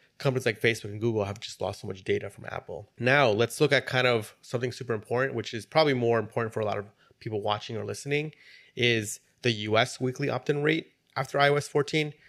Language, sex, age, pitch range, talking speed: English, male, 30-49, 105-130 Hz, 215 wpm